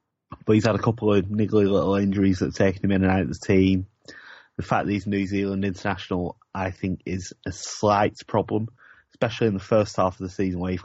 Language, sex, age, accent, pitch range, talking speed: English, male, 30-49, British, 90-100 Hz, 230 wpm